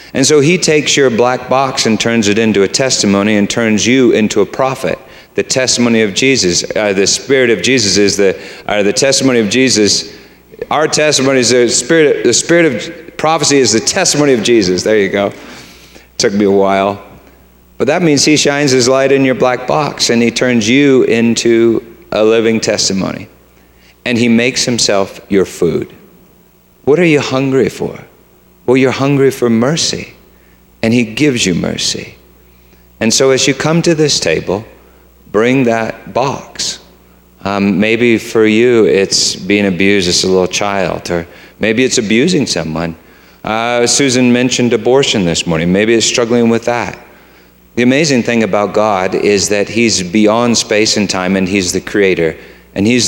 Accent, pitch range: American, 95-130 Hz